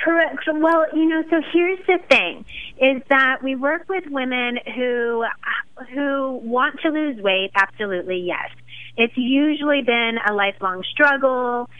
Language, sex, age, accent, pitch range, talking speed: English, female, 30-49, American, 210-280 Hz, 140 wpm